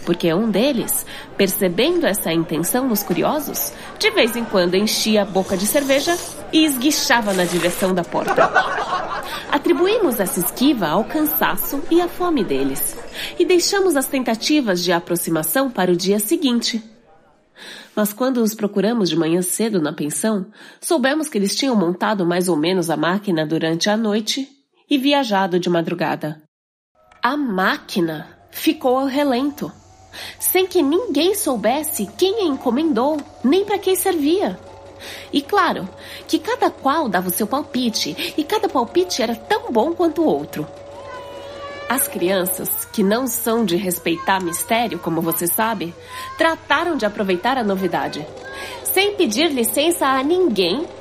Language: Portuguese